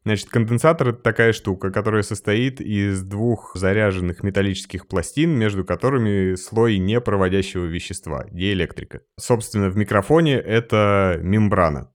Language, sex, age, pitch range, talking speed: Russian, male, 20-39, 90-110 Hz, 115 wpm